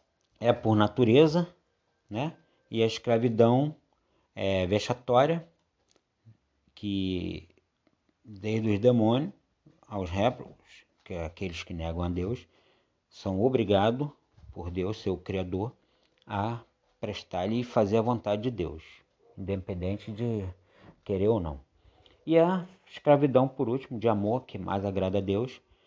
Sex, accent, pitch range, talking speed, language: male, Brazilian, 95-120 Hz, 125 wpm, Portuguese